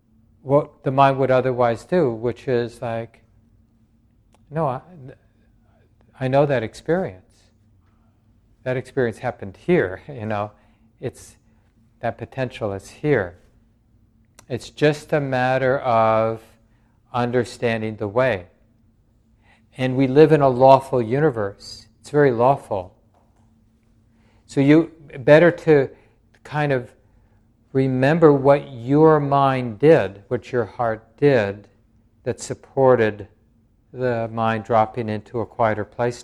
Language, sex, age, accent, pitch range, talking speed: English, male, 50-69, American, 110-130 Hz, 115 wpm